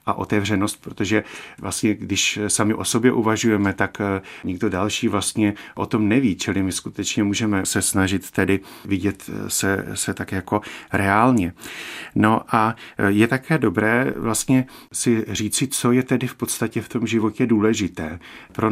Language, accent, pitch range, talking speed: Czech, native, 100-115 Hz, 150 wpm